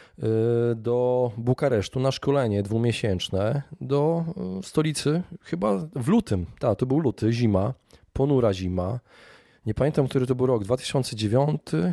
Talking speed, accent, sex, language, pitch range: 120 wpm, native, male, Polish, 110-135 Hz